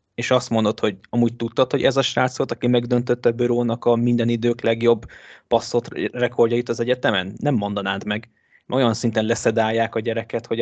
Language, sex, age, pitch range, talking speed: Hungarian, male, 20-39, 110-125 Hz, 180 wpm